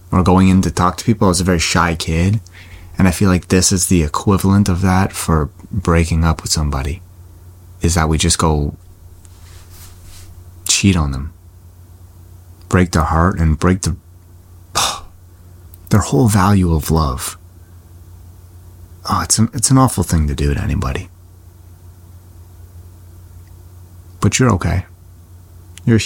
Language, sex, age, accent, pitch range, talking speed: English, male, 30-49, American, 85-95 Hz, 145 wpm